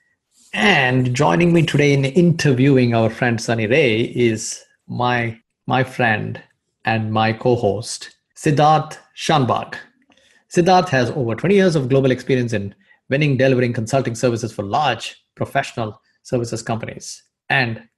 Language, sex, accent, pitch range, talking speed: English, male, Indian, 110-135 Hz, 125 wpm